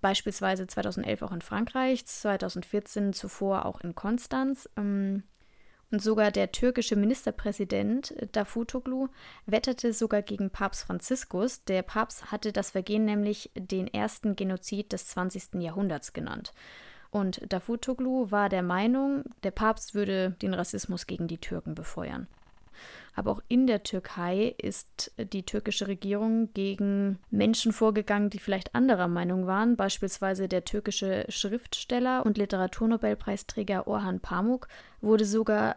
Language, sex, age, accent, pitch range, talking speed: German, female, 20-39, German, 195-230 Hz, 125 wpm